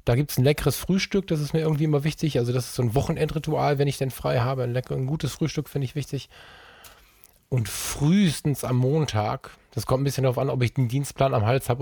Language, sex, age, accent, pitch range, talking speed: German, male, 10-29, German, 125-150 Hz, 240 wpm